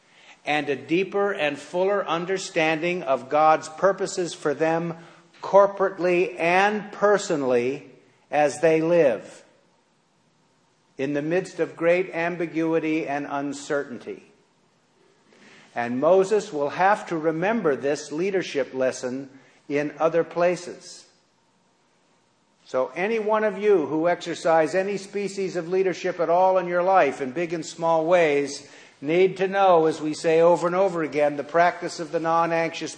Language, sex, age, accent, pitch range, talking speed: English, male, 50-69, American, 145-185 Hz, 135 wpm